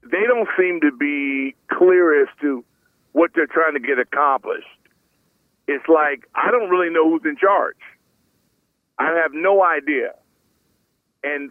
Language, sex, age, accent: English, male, 50-69, American